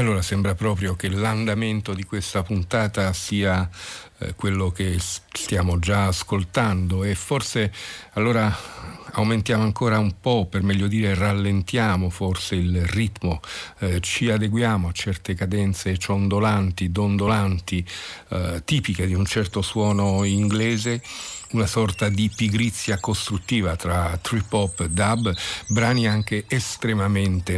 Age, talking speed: 50-69, 120 wpm